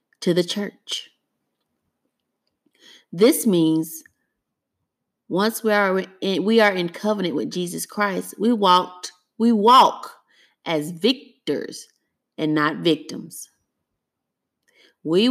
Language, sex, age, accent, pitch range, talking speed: English, female, 30-49, American, 175-255 Hz, 100 wpm